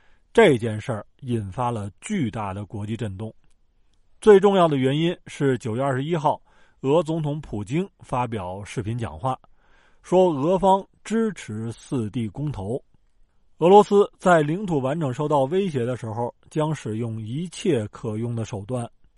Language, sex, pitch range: Chinese, male, 110-160 Hz